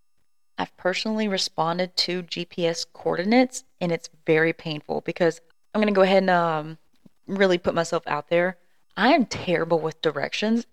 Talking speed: 155 wpm